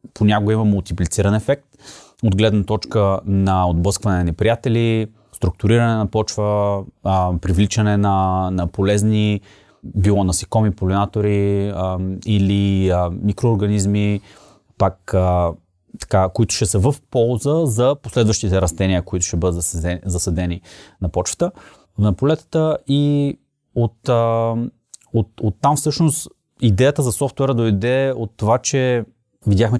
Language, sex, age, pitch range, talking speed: Bulgarian, male, 30-49, 95-115 Hz, 120 wpm